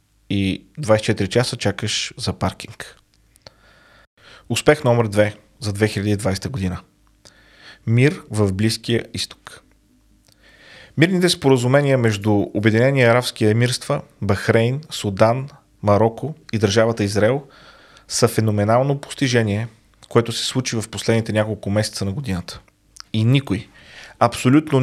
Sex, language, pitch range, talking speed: male, Bulgarian, 105-130 Hz, 105 wpm